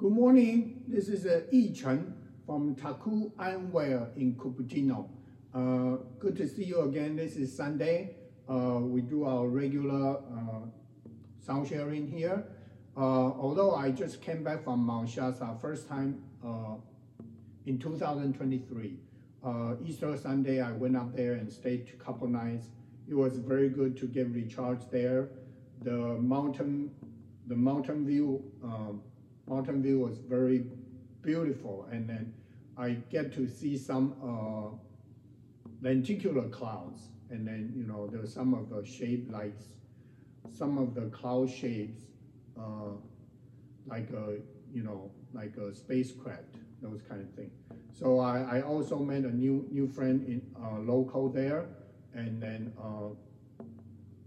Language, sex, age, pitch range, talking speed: English, male, 60-79, 115-135 Hz, 140 wpm